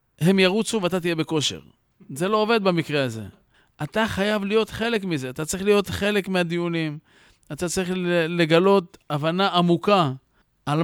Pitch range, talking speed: 155-200 Hz, 145 wpm